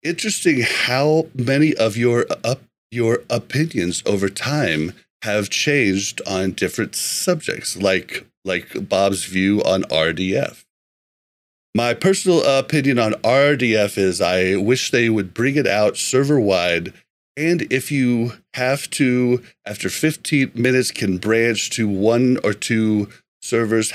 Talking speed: 125 wpm